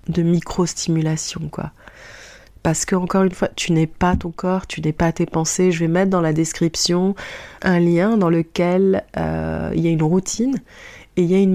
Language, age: English, 30-49